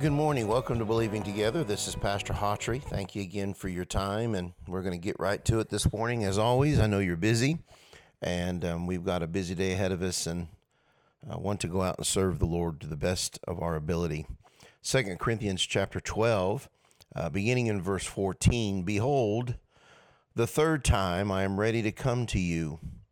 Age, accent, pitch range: 50-69, American, 95-115 Hz